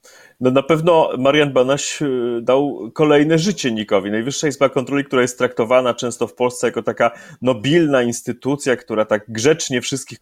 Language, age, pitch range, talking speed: Polish, 30-49, 125-165 Hz, 155 wpm